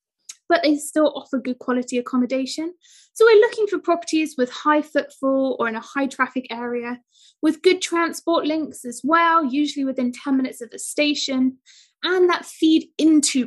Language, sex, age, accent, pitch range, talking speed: English, female, 20-39, British, 250-335 Hz, 170 wpm